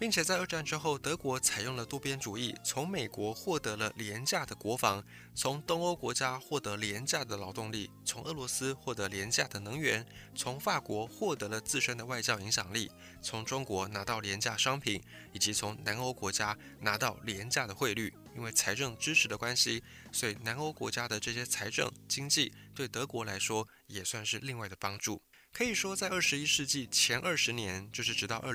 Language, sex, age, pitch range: Chinese, male, 20-39, 105-140 Hz